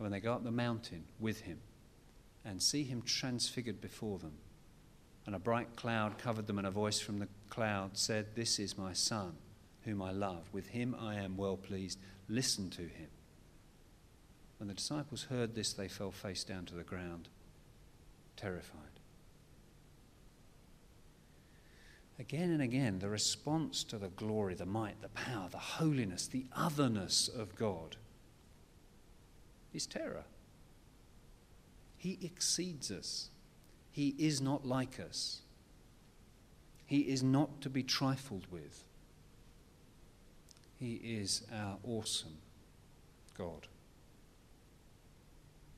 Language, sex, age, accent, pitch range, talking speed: English, male, 50-69, British, 95-120 Hz, 125 wpm